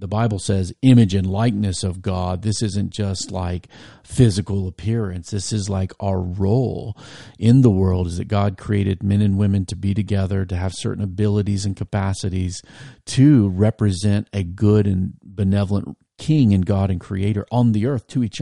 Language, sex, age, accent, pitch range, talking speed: English, male, 50-69, American, 95-110 Hz, 175 wpm